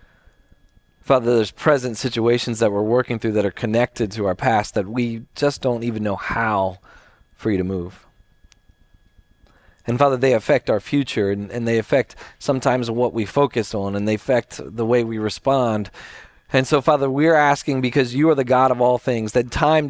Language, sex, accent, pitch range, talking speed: English, male, American, 110-145 Hz, 185 wpm